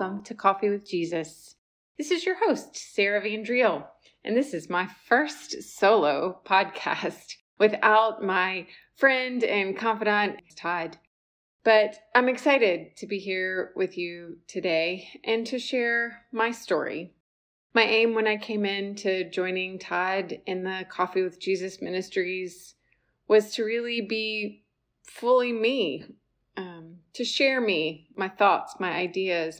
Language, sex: English, female